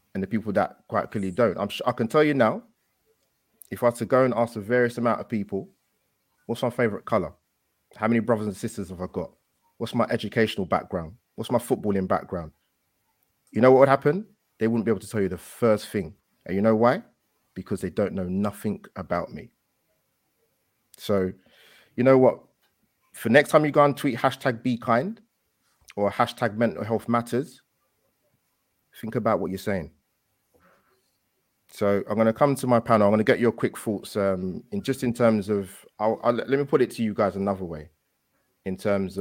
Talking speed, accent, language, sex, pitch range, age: 200 wpm, British, English, male, 95-120 Hz, 30-49